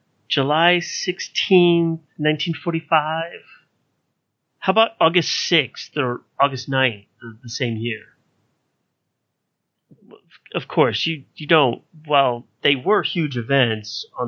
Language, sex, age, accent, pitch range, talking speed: English, male, 30-49, American, 120-160 Hz, 105 wpm